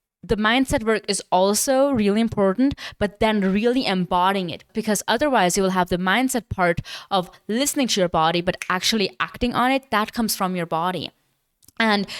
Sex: female